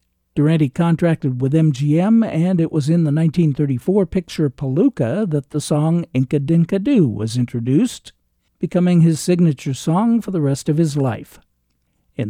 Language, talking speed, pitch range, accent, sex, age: English, 145 wpm, 135-175 Hz, American, male, 60-79